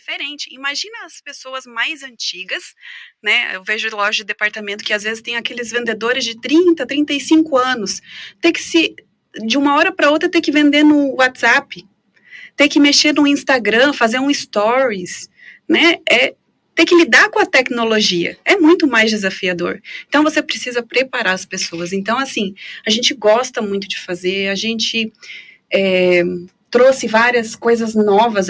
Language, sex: Portuguese, female